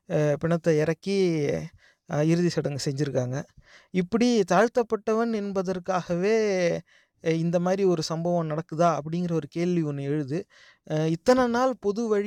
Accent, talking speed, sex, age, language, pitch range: Indian, 125 wpm, male, 30-49, English, 155-195 Hz